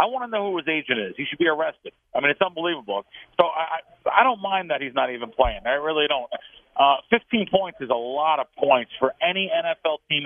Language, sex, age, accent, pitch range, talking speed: English, male, 40-59, American, 155-205 Hz, 240 wpm